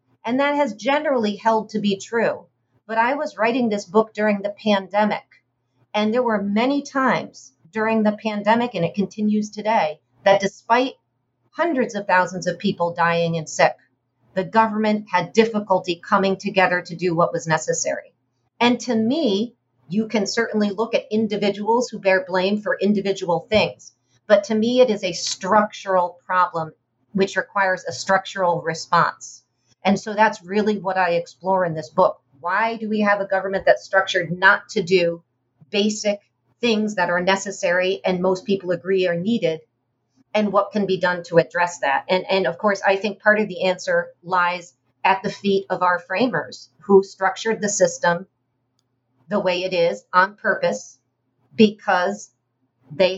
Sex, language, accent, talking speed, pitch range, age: female, English, American, 165 wpm, 170-215 Hz, 40-59